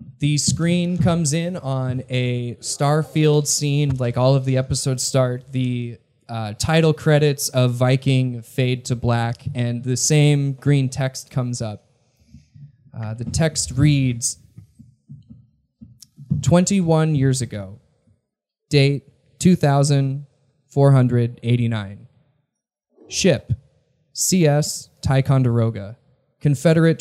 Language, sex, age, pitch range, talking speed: English, male, 20-39, 120-145 Hz, 95 wpm